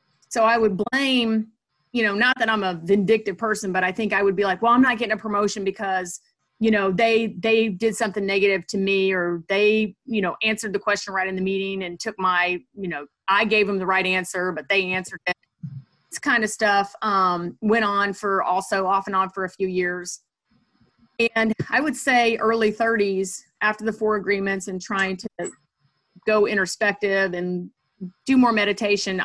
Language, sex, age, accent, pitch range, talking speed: English, female, 30-49, American, 185-220 Hz, 195 wpm